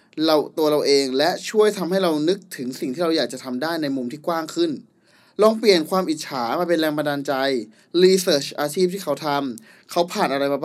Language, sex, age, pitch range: Thai, male, 20-39, 130-185 Hz